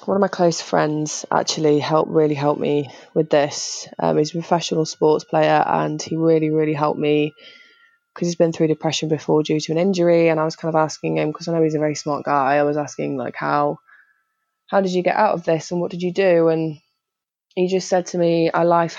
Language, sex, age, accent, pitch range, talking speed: English, female, 20-39, British, 155-175 Hz, 235 wpm